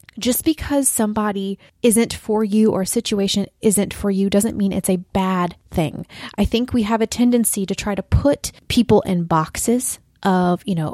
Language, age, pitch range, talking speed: English, 20-39, 190-250 Hz, 185 wpm